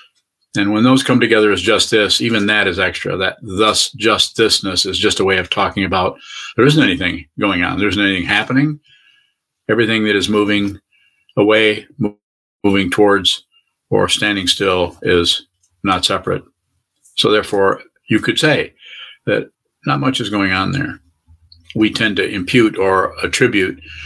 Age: 50-69